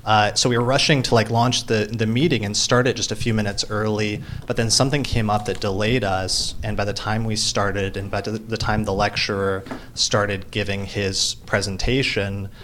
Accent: American